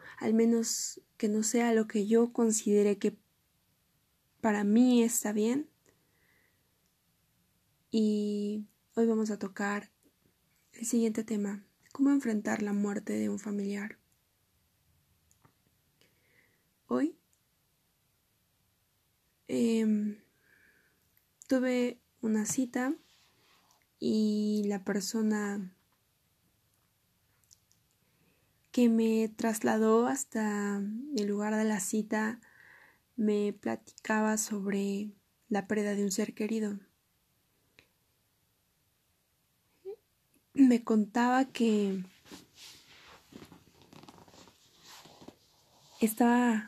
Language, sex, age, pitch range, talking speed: Spanish, female, 10-29, 205-230 Hz, 75 wpm